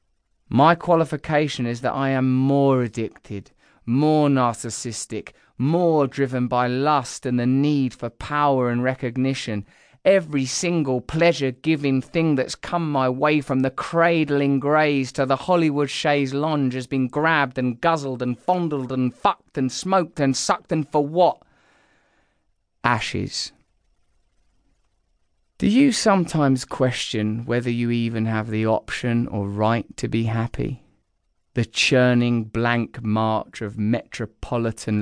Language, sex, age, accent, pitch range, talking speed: English, male, 20-39, British, 110-140 Hz, 130 wpm